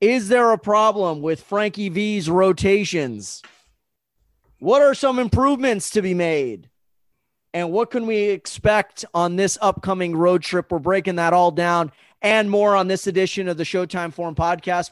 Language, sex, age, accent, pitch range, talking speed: English, male, 30-49, American, 160-195 Hz, 160 wpm